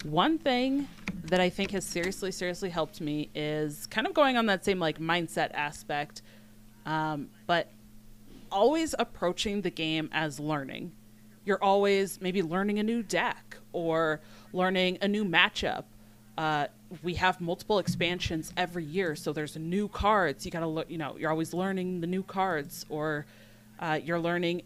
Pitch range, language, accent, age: 155-190 Hz, English, American, 30-49